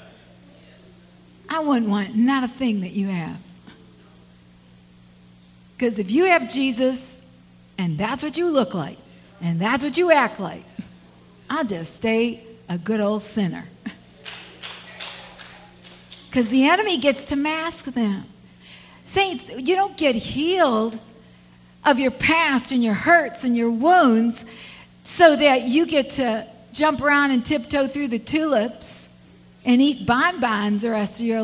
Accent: American